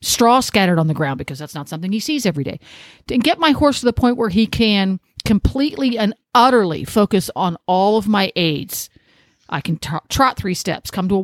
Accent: American